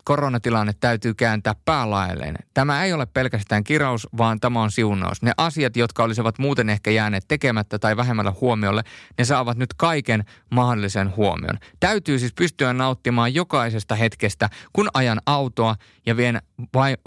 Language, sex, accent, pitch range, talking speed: Finnish, male, native, 105-135 Hz, 150 wpm